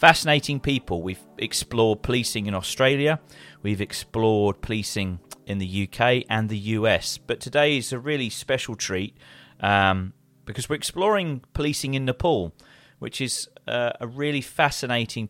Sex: male